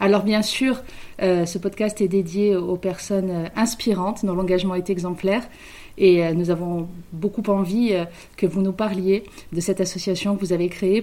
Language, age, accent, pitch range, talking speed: French, 30-49, French, 180-210 Hz, 185 wpm